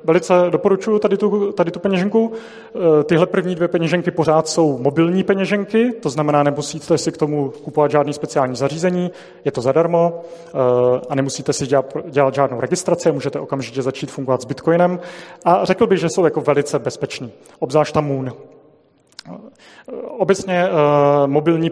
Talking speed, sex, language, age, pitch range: 145 wpm, male, Czech, 30-49, 135-170 Hz